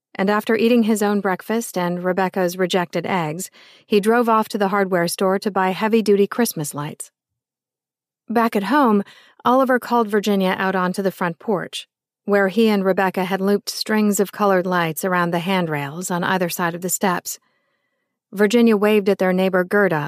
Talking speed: 175 wpm